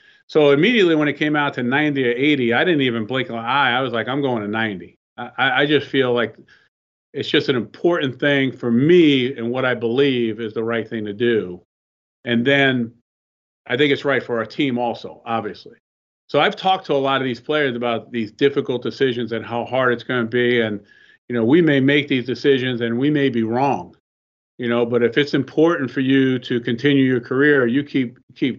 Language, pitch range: English, 115-140 Hz